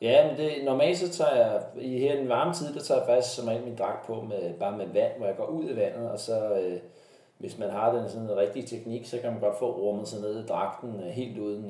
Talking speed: 265 wpm